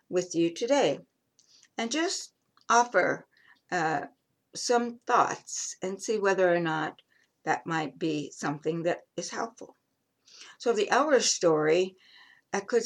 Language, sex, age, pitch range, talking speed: English, female, 60-79, 180-260 Hz, 125 wpm